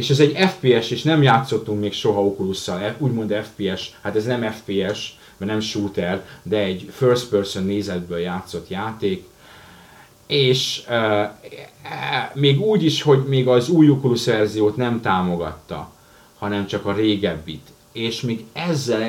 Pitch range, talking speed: 100-130 Hz, 150 wpm